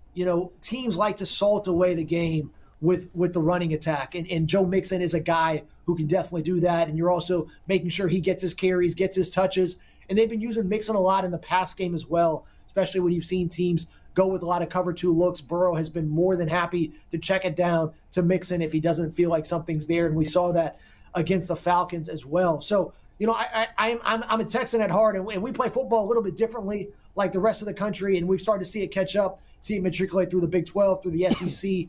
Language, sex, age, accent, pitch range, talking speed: English, male, 30-49, American, 165-190 Hz, 255 wpm